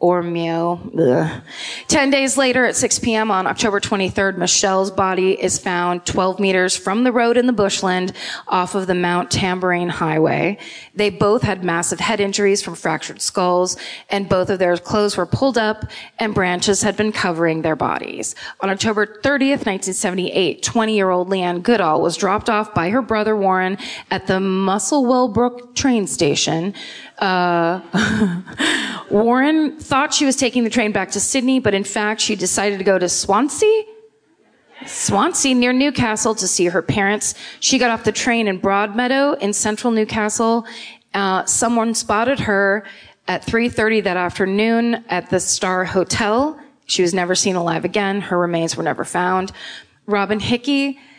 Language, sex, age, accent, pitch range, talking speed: English, female, 20-39, American, 185-225 Hz, 160 wpm